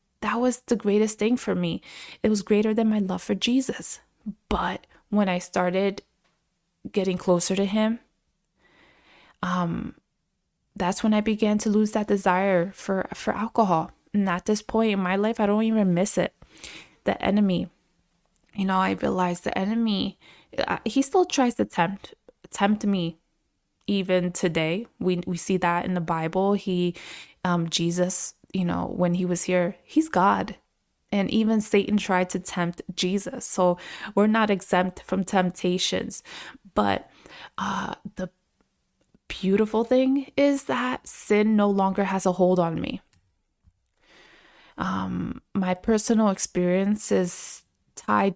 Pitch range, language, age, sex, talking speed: 180-210 Hz, English, 20-39, female, 145 wpm